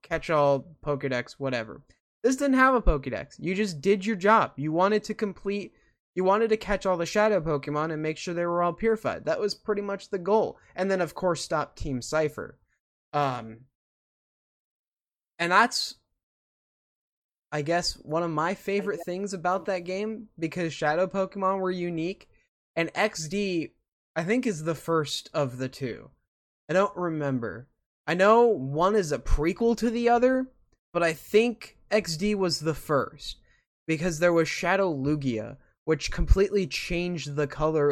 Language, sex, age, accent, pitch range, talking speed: English, male, 20-39, American, 145-195 Hz, 160 wpm